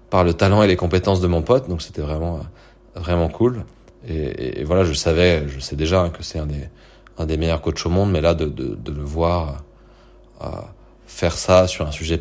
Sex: male